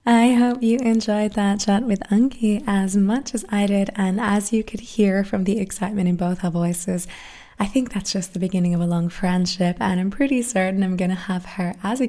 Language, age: English, 20-39